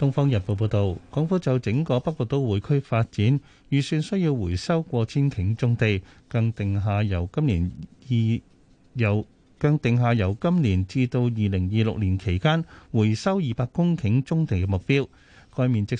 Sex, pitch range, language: male, 100-145 Hz, Chinese